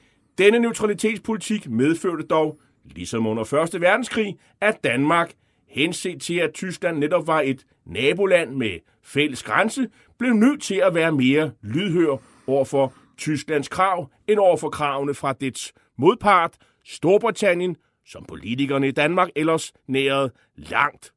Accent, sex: native, male